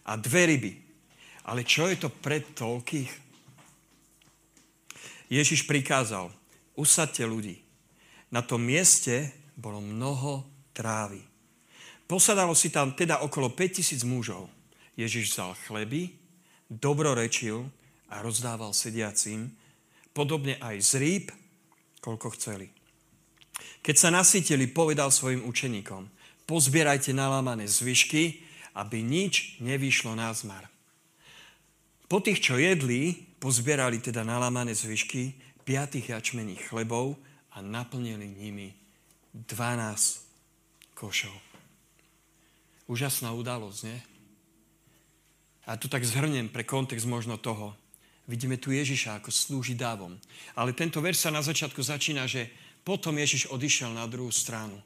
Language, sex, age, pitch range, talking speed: Slovak, male, 50-69, 115-150 Hz, 110 wpm